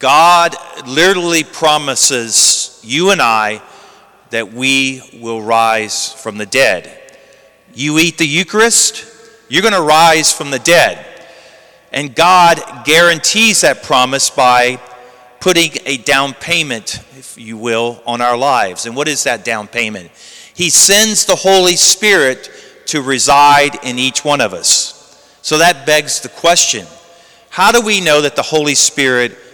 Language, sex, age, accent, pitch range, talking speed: English, male, 40-59, American, 130-175 Hz, 145 wpm